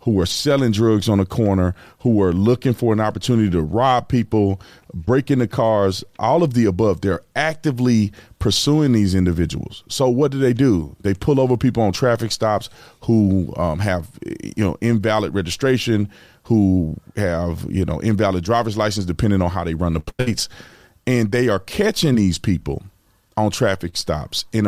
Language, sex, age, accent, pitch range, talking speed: English, male, 30-49, American, 95-120 Hz, 175 wpm